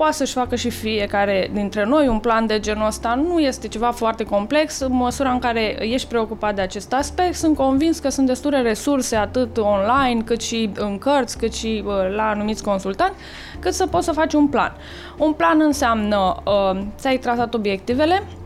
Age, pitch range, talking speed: 20-39, 215-290 Hz, 185 wpm